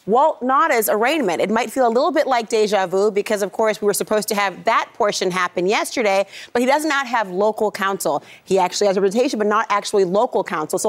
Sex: female